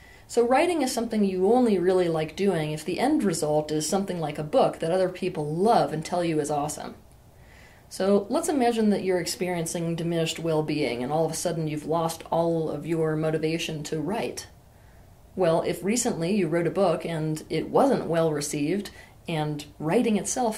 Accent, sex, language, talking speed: American, female, English, 185 wpm